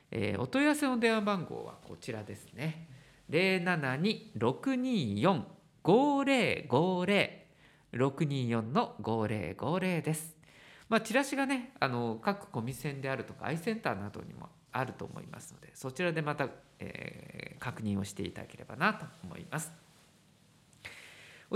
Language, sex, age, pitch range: Japanese, male, 50-69, 140-215 Hz